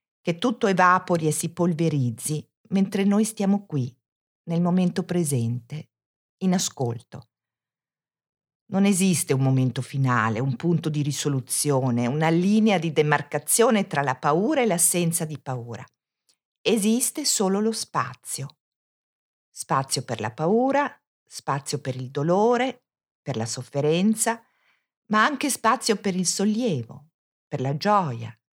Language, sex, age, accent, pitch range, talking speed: Italian, female, 50-69, native, 135-210 Hz, 125 wpm